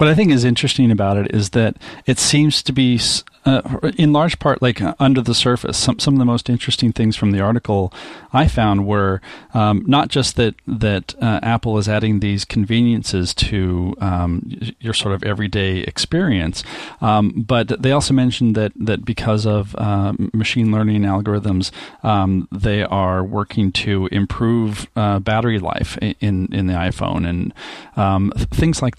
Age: 40-59